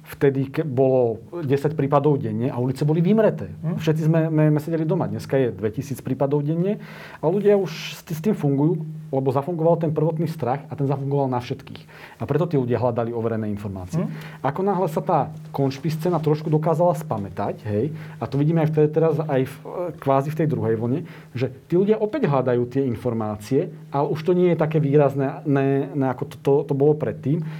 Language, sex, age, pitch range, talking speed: Slovak, male, 40-59, 125-155 Hz, 185 wpm